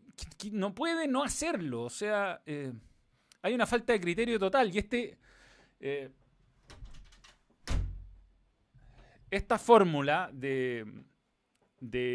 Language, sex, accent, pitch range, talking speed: Spanish, male, Argentinian, 130-170 Hz, 100 wpm